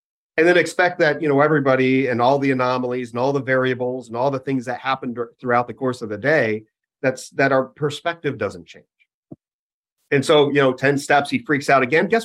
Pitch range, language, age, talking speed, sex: 125-165 Hz, English, 40-59, 215 wpm, male